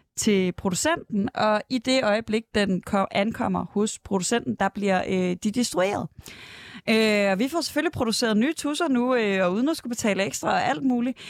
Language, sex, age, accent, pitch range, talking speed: Danish, female, 20-39, native, 185-225 Hz, 170 wpm